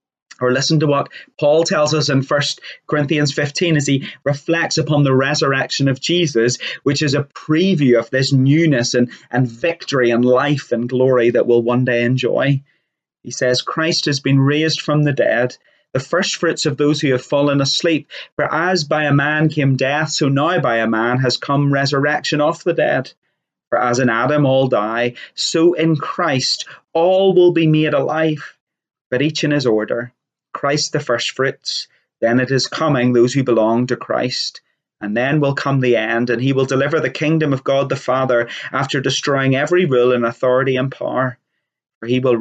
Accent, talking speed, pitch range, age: British, 190 wpm, 125-155 Hz, 30-49